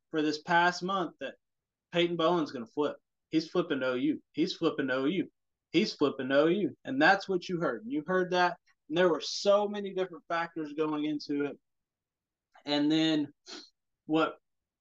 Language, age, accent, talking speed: English, 20-39, American, 180 wpm